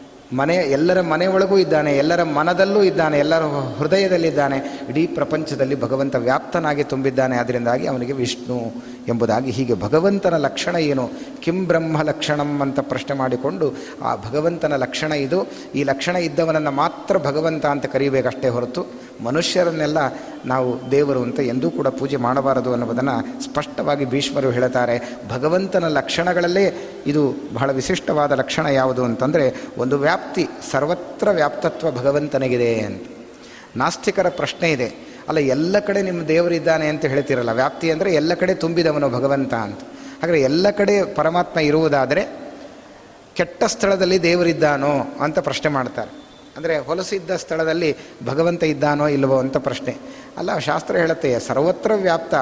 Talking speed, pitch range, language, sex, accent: 125 wpm, 135-175 Hz, Kannada, male, native